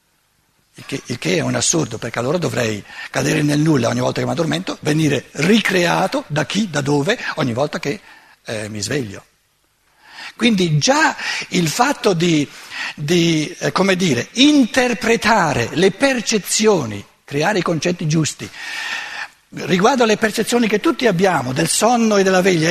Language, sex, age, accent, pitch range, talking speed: Italian, male, 60-79, native, 150-230 Hz, 150 wpm